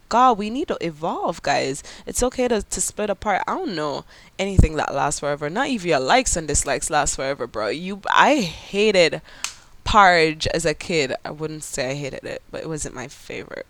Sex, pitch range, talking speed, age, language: female, 160-215 Hz, 200 wpm, 20-39, English